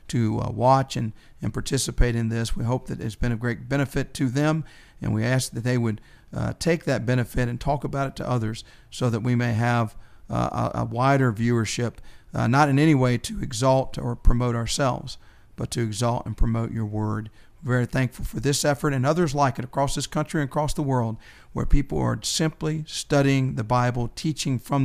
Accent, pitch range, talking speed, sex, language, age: American, 115-135 Hz, 205 wpm, male, English, 50-69